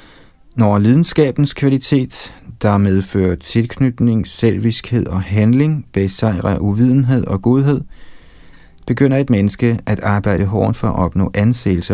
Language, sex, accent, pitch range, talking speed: Danish, male, native, 95-115 Hz, 115 wpm